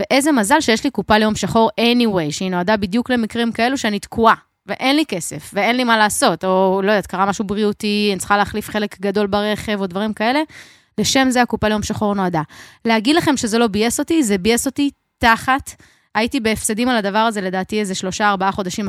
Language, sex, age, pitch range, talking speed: Hebrew, female, 20-39, 200-260 Hz, 200 wpm